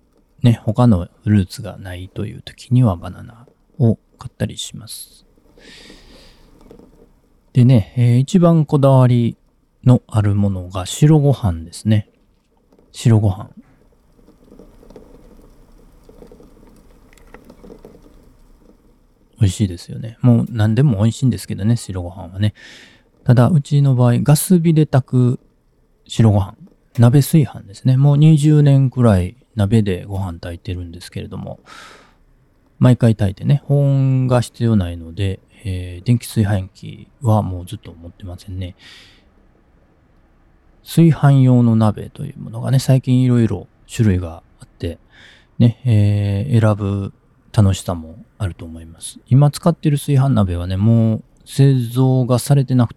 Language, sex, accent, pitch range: Japanese, male, native, 100-130 Hz